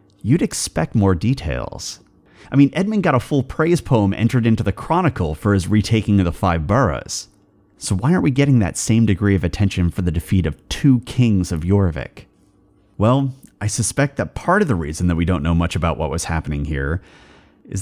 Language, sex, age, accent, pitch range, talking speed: English, male, 30-49, American, 85-115 Hz, 200 wpm